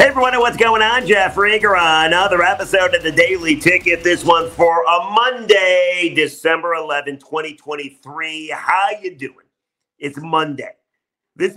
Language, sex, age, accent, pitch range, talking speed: English, male, 40-59, American, 145-190 Hz, 145 wpm